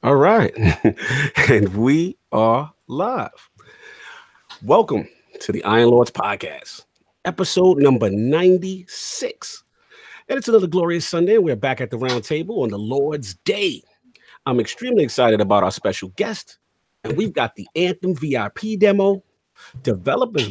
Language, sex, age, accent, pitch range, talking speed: English, male, 40-59, American, 125-200 Hz, 130 wpm